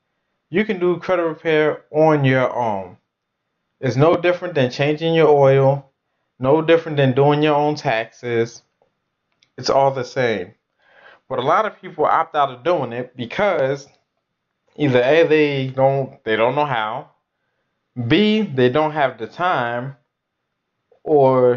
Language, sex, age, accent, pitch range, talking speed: English, male, 20-39, American, 125-160 Hz, 145 wpm